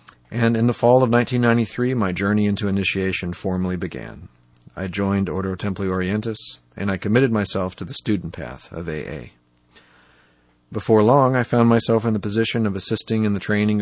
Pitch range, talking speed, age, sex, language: 90-110 Hz, 175 wpm, 40-59, male, English